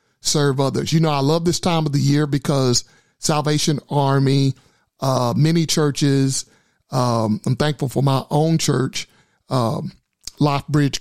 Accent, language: American, English